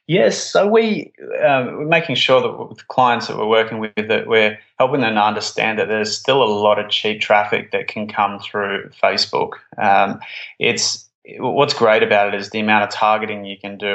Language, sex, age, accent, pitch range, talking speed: English, male, 20-39, Australian, 100-110 Hz, 200 wpm